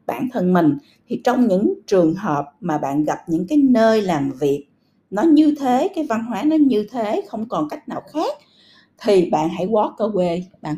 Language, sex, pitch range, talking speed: Vietnamese, female, 165-265 Hz, 205 wpm